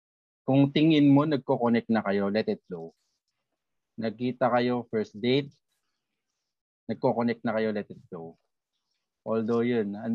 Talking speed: 130 wpm